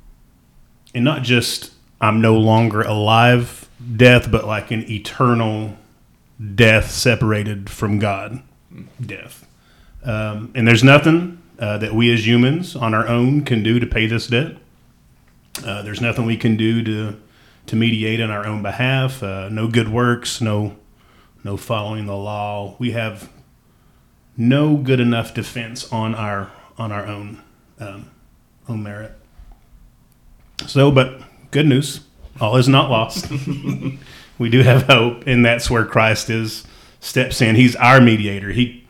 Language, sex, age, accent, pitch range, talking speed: English, male, 30-49, American, 105-125 Hz, 145 wpm